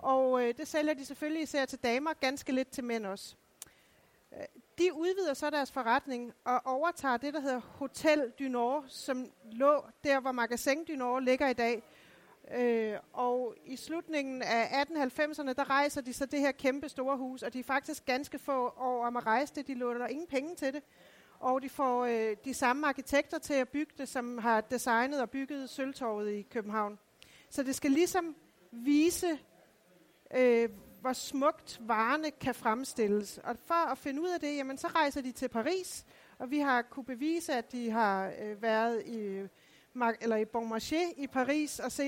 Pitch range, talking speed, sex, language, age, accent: 240-285 Hz, 180 wpm, female, Danish, 40-59, native